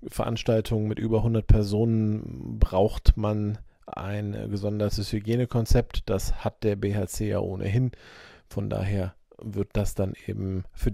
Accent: German